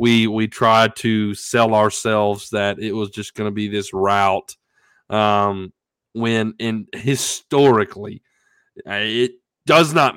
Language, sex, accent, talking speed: English, male, American, 130 wpm